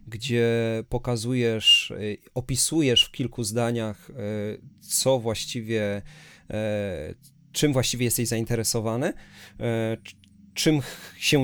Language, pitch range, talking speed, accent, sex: Polish, 110-130 Hz, 75 wpm, native, male